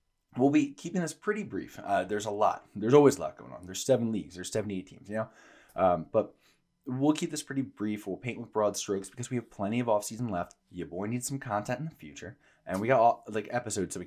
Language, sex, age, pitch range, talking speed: English, male, 20-39, 90-120 Hz, 250 wpm